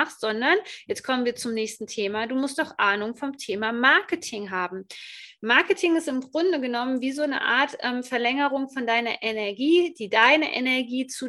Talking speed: 180 wpm